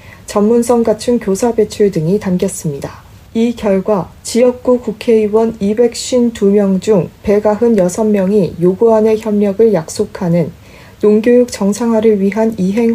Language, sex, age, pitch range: Korean, female, 40-59, 190-225 Hz